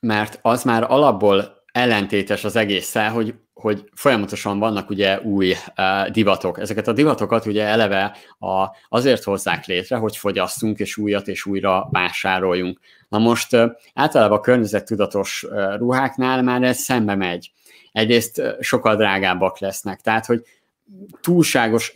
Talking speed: 125 wpm